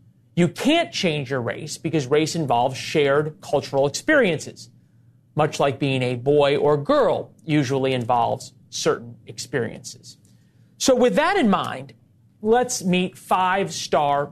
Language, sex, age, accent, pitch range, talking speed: English, male, 40-59, American, 135-180 Hz, 125 wpm